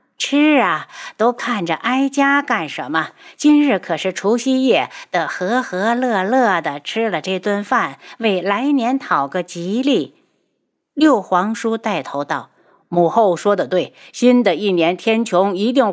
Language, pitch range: Chinese, 180-250 Hz